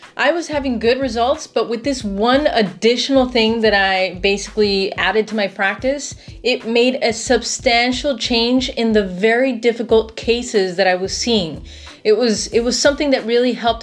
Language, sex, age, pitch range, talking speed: English, female, 30-49, 210-255 Hz, 175 wpm